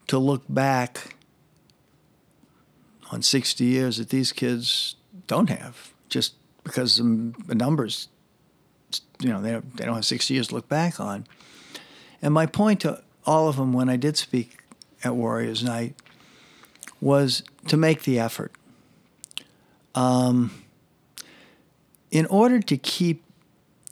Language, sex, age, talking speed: English, male, 60-79, 125 wpm